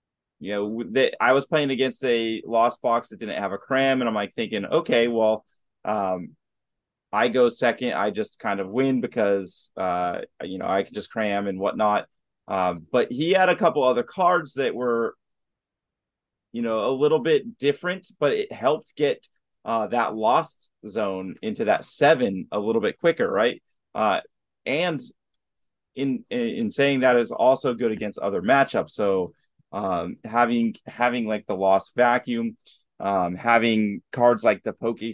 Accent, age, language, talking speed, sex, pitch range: American, 30-49, English, 170 wpm, male, 105-135 Hz